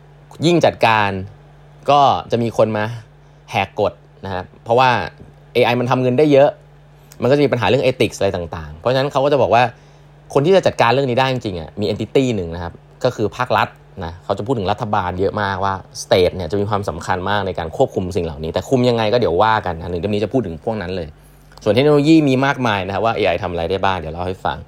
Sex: male